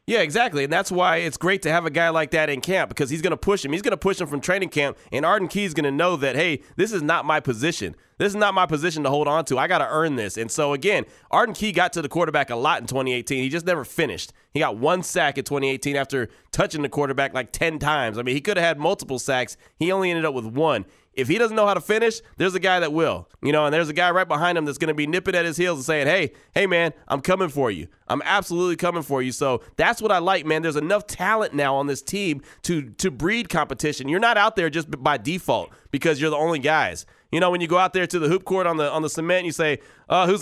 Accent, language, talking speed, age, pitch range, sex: American, English, 290 wpm, 20-39, 145-190 Hz, male